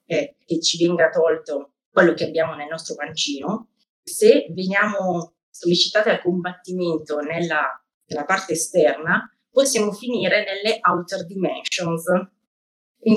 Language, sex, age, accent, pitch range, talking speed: Italian, female, 30-49, native, 170-215 Hz, 115 wpm